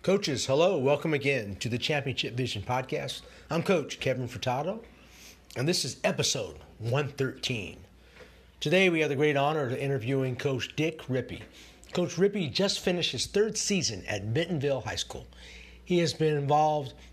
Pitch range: 110-165 Hz